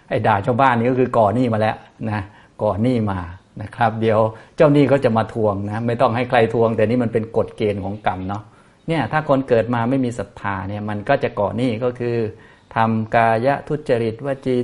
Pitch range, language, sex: 105-125 Hz, Thai, male